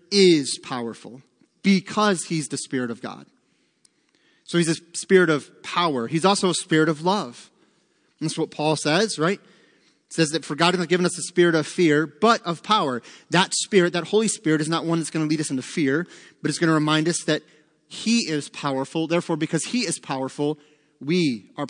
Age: 30-49